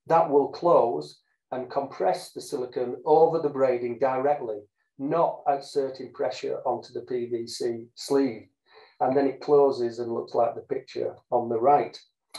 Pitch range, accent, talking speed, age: 125-180 Hz, British, 145 wpm, 40-59